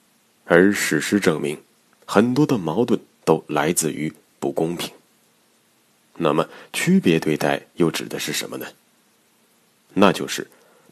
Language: Chinese